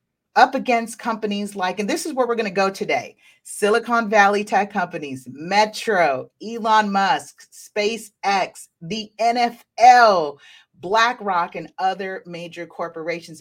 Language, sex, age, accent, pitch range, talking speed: English, female, 40-59, American, 170-220 Hz, 125 wpm